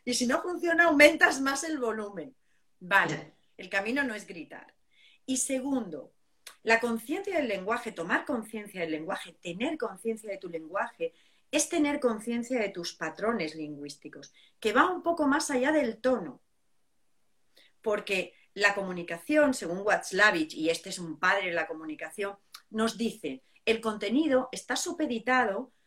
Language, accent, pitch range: Spanish, Spanish, 195-260 Hz